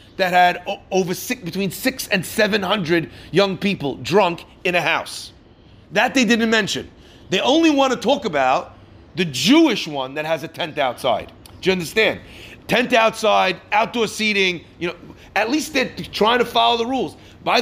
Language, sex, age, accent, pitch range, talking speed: English, male, 40-59, American, 165-240 Hz, 175 wpm